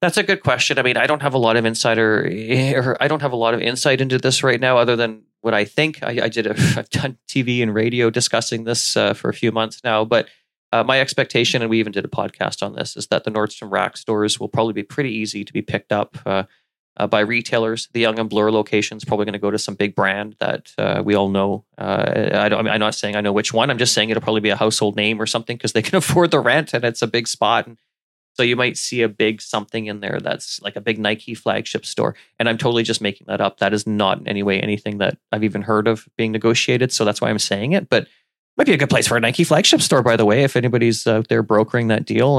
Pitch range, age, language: 105-125 Hz, 30-49, English